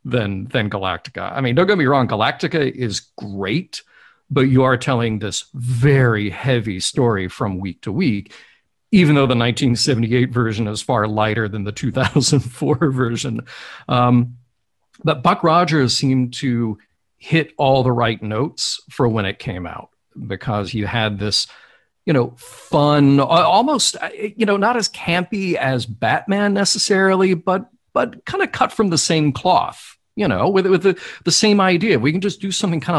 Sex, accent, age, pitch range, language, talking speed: male, American, 50-69, 105-145 Hz, English, 165 wpm